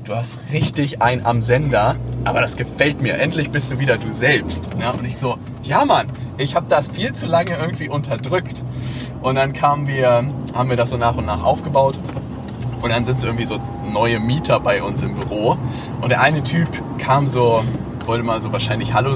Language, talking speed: German, 205 wpm